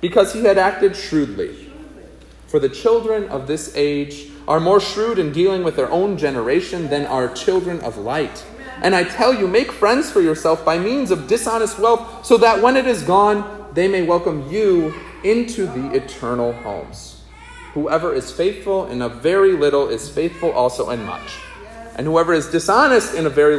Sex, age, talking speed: male, 30-49, 180 wpm